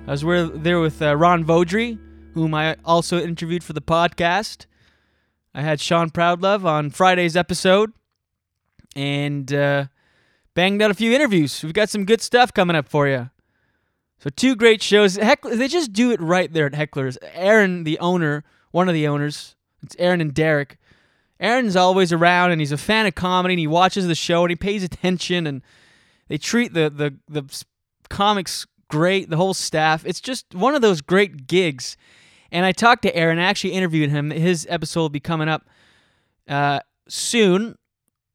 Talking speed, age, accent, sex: 180 wpm, 20-39, American, male